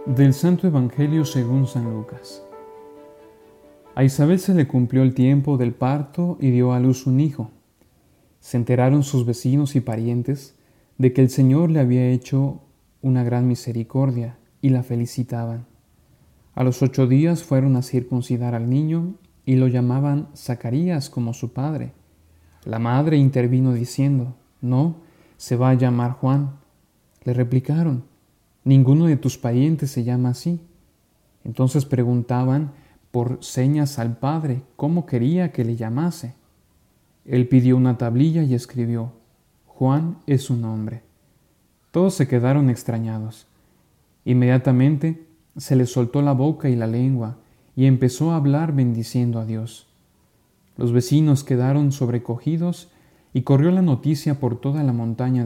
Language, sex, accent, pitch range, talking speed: Spanish, male, Mexican, 120-145 Hz, 140 wpm